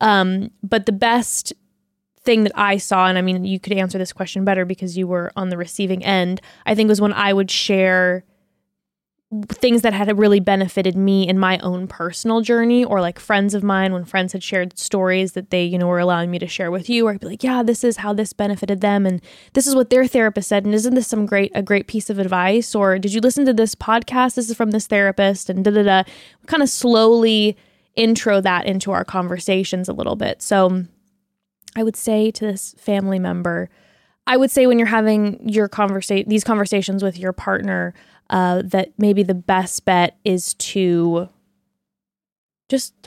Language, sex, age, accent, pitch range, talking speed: English, female, 20-39, American, 185-225 Hz, 205 wpm